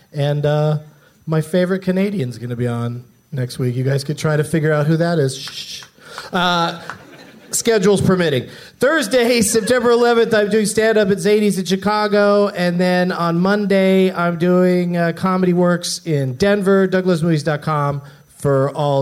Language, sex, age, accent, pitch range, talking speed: English, male, 40-59, American, 130-185 Hz, 155 wpm